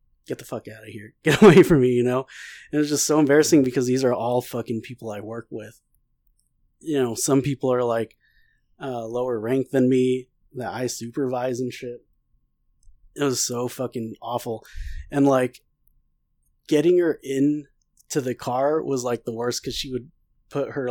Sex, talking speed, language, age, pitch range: male, 185 wpm, English, 20-39, 120-150 Hz